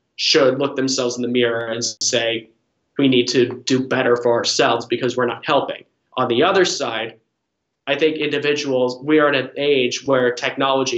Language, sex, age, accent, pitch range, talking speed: English, male, 20-39, American, 120-140 Hz, 180 wpm